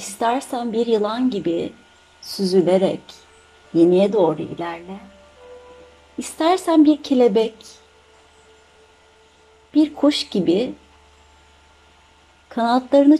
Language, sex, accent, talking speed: Turkish, female, native, 70 wpm